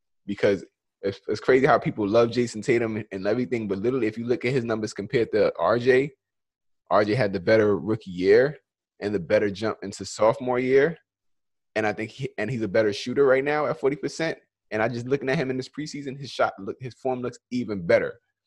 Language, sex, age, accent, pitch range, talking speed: English, male, 20-39, American, 105-125 Hz, 205 wpm